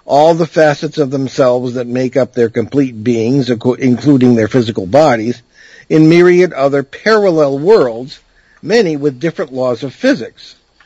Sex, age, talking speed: male, 50-69, 145 wpm